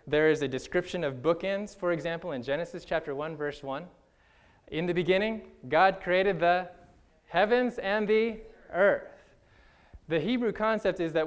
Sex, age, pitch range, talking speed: male, 20-39, 145-220 Hz, 155 wpm